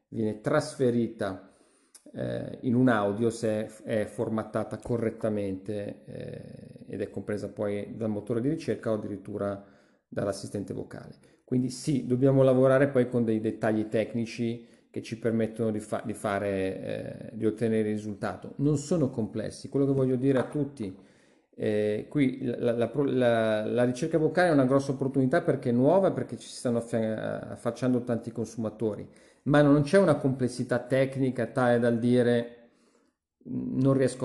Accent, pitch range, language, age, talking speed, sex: native, 110-140 Hz, Italian, 40-59, 140 wpm, male